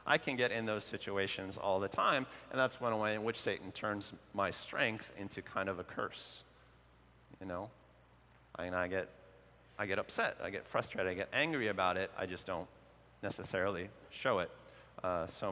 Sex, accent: male, American